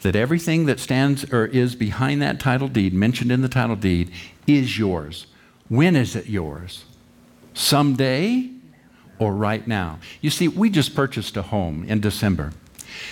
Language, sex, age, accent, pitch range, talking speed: English, male, 60-79, American, 115-175 Hz, 155 wpm